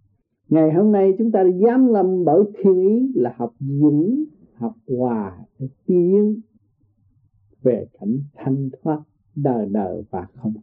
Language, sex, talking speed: Vietnamese, male, 140 wpm